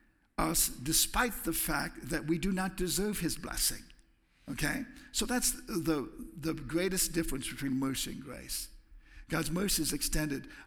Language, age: English, 60-79